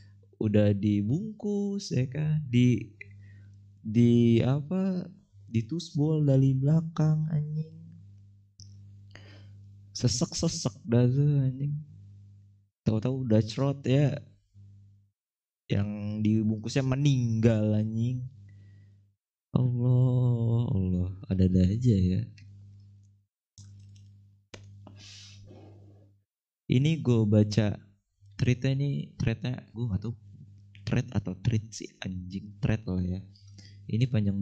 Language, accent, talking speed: Indonesian, native, 80 wpm